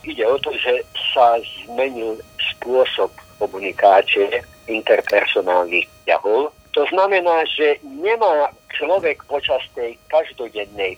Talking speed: 100 wpm